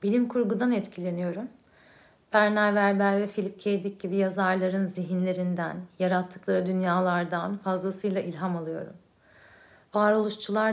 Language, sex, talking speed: Turkish, female, 100 wpm